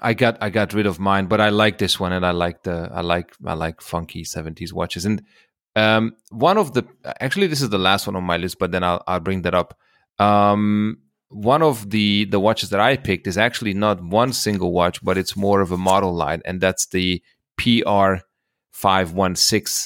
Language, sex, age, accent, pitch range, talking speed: English, male, 30-49, German, 90-110 Hz, 220 wpm